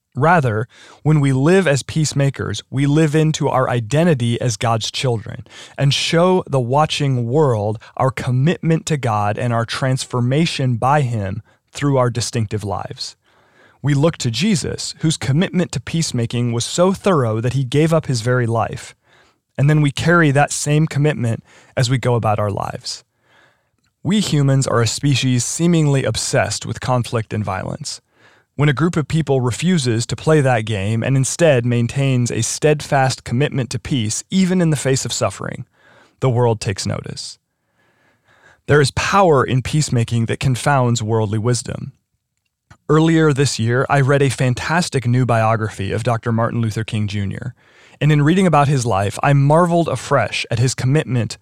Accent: American